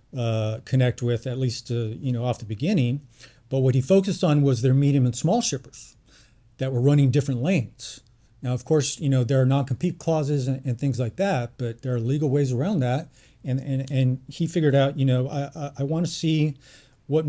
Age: 40-59